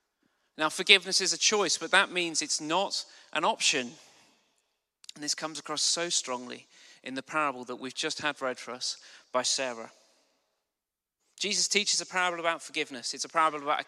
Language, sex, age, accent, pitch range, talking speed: English, male, 30-49, British, 145-190 Hz, 175 wpm